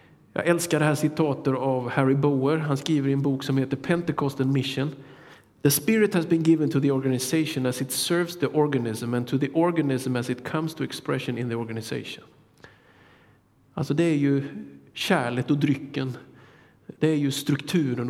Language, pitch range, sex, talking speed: Swedish, 130-155 Hz, male, 175 wpm